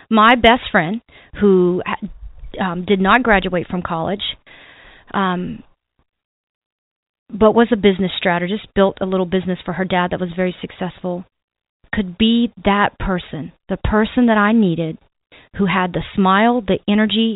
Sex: female